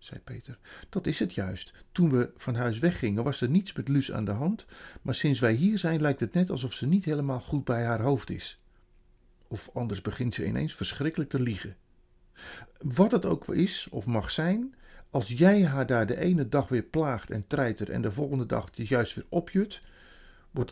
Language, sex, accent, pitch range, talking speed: Dutch, male, Dutch, 110-165 Hz, 205 wpm